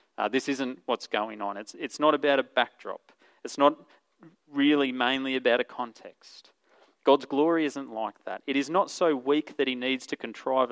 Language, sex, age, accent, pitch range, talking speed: English, male, 30-49, Australian, 105-140 Hz, 190 wpm